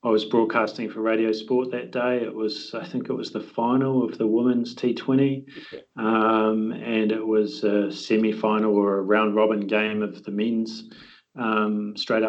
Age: 30-49